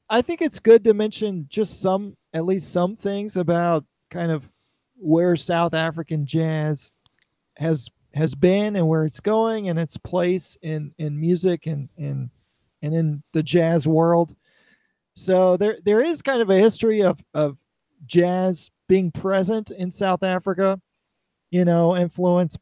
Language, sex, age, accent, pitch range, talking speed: English, male, 40-59, American, 160-190 Hz, 155 wpm